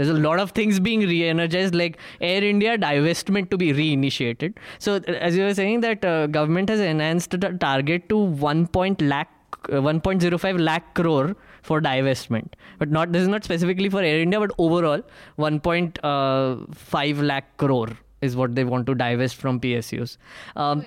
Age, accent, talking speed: 20-39, Indian, 165 wpm